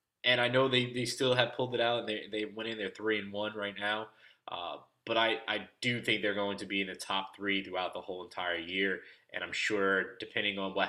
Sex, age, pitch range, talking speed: male, 20-39, 95-110 Hz, 255 wpm